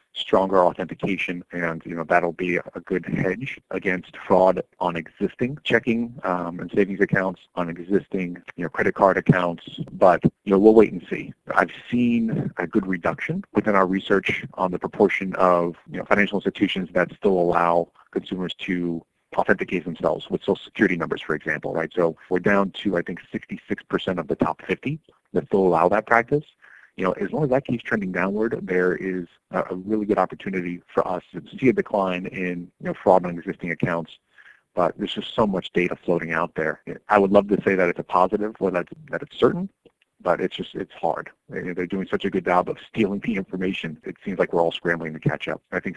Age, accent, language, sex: 40-59, American, English, male